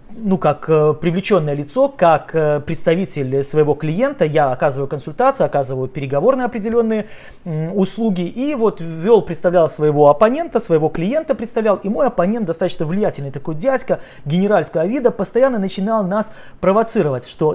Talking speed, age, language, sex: 130 wpm, 30-49, Russian, male